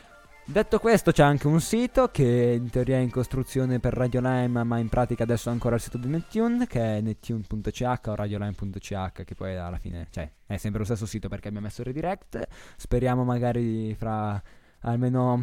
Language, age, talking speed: Italian, 20-39, 185 wpm